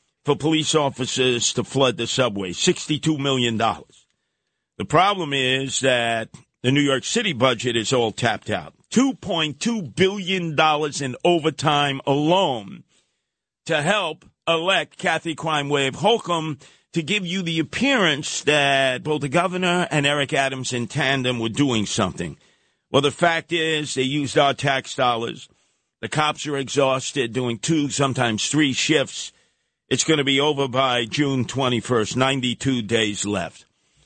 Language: English